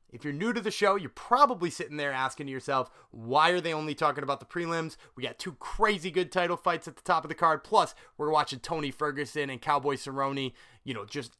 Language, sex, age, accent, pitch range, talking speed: English, male, 30-49, American, 135-190 Hz, 230 wpm